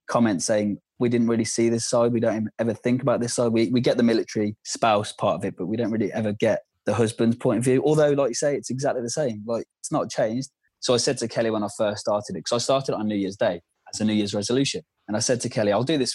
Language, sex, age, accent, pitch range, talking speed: English, male, 20-39, British, 105-125 Hz, 290 wpm